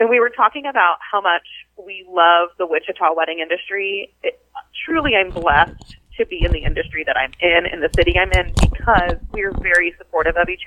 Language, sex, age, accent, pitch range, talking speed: English, female, 30-49, American, 170-225 Hz, 195 wpm